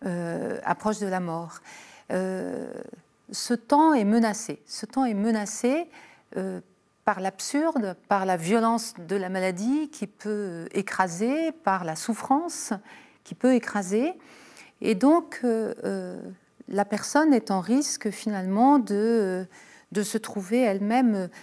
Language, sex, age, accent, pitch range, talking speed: French, female, 40-59, French, 190-255 Hz, 130 wpm